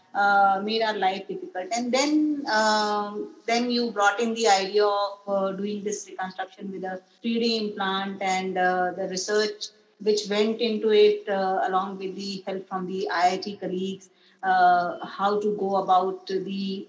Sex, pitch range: female, 190-235 Hz